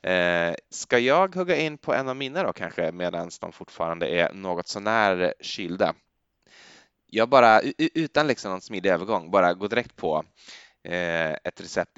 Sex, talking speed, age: male, 165 wpm, 20-39